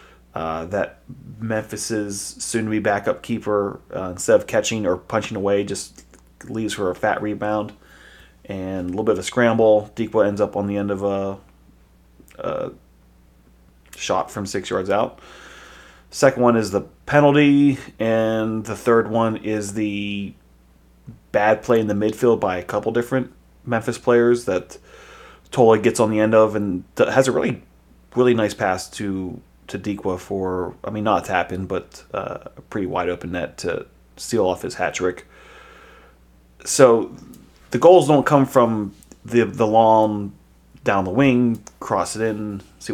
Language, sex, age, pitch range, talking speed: English, male, 30-49, 85-120 Hz, 160 wpm